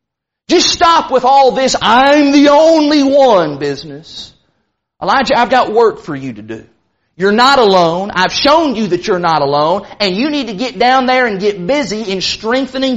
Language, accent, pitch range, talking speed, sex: English, American, 175-260 Hz, 185 wpm, male